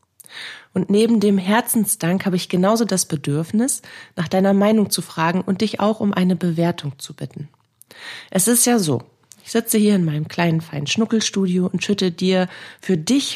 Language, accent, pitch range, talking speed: German, German, 160-200 Hz, 175 wpm